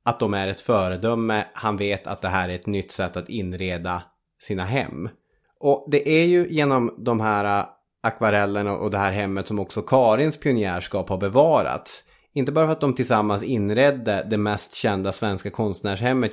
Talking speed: 175 wpm